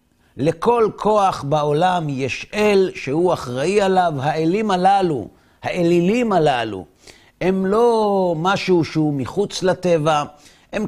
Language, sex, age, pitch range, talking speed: Hebrew, male, 50-69, 140-195 Hz, 105 wpm